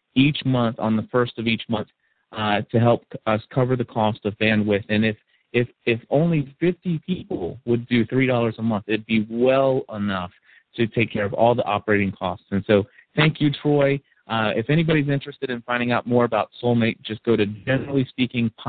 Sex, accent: male, American